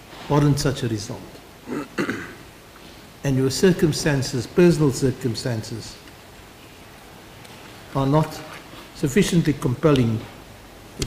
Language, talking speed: English, 80 wpm